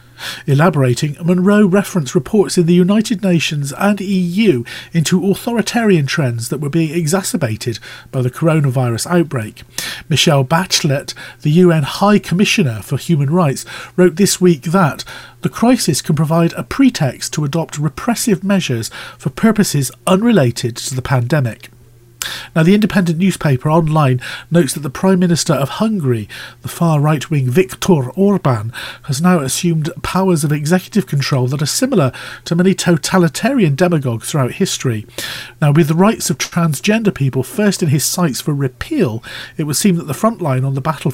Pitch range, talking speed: 135-190 Hz, 155 wpm